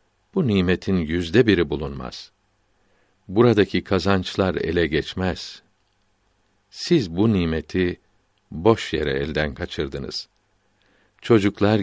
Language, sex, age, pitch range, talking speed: Turkish, male, 60-79, 90-105 Hz, 85 wpm